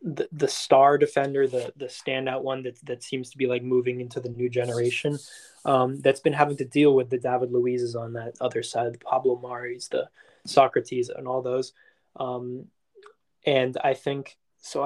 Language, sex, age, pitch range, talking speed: English, male, 20-39, 125-145 Hz, 185 wpm